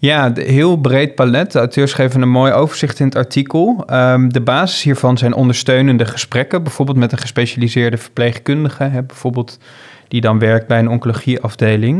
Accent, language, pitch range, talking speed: Dutch, Dutch, 120-140 Hz, 165 wpm